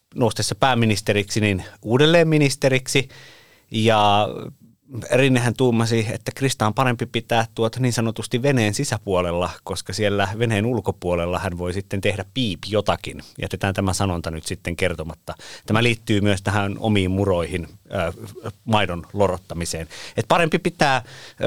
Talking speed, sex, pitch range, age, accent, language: 125 wpm, male, 95-130 Hz, 30-49, native, Finnish